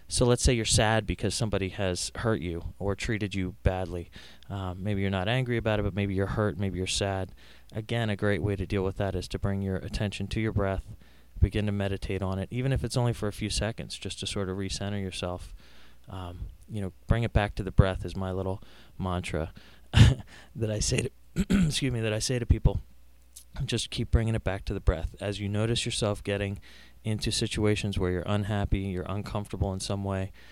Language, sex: English, male